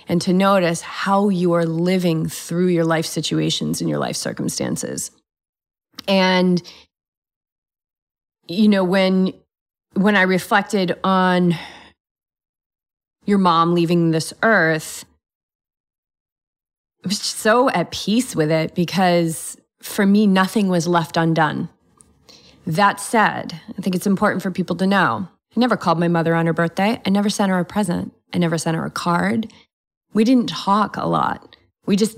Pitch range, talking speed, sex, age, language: 170-205 Hz, 145 wpm, female, 30-49, English